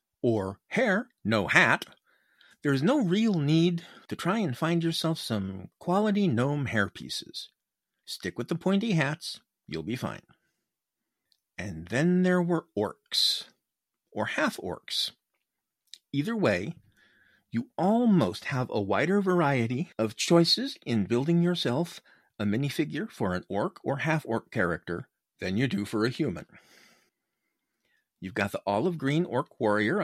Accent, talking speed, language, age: American, 135 wpm, English, 50-69